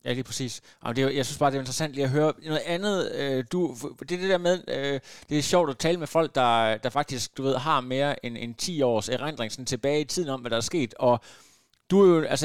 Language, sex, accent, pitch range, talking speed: Danish, male, native, 125-160 Hz, 280 wpm